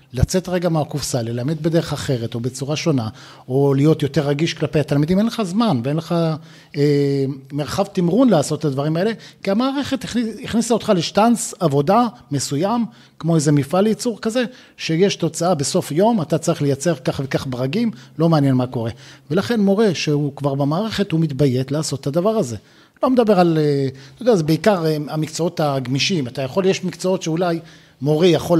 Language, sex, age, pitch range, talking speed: Hebrew, male, 50-69, 145-195 Hz, 155 wpm